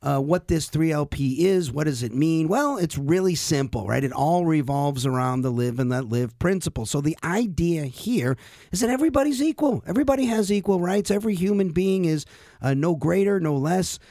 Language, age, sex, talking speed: English, 50-69, male, 190 wpm